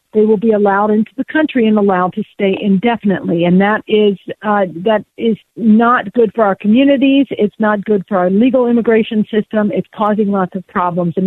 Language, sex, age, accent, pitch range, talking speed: English, female, 50-69, American, 195-235 Hz, 195 wpm